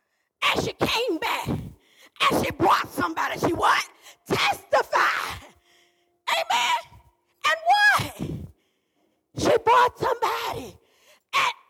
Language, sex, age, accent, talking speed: English, female, 40-59, American, 90 wpm